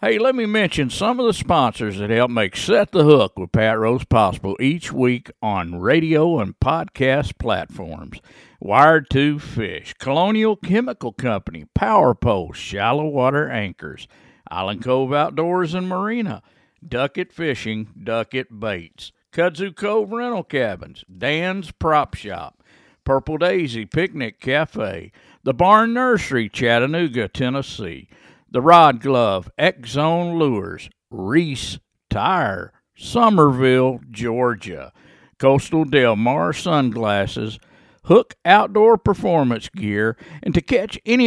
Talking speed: 120 wpm